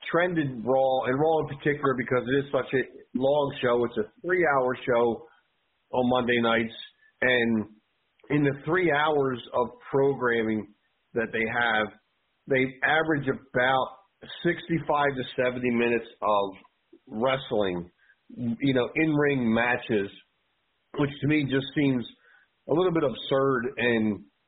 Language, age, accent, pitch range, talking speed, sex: English, 40-59, American, 120-150 Hz, 130 wpm, male